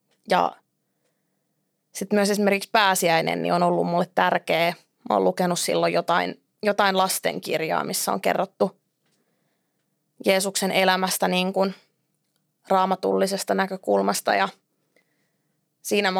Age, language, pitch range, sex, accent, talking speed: 20-39, Finnish, 160-195 Hz, female, native, 105 wpm